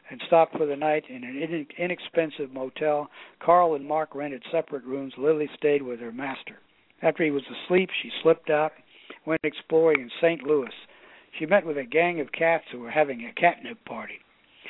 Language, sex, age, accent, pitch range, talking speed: English, male, 60-79, American, 140-175 Hz, 185 wpm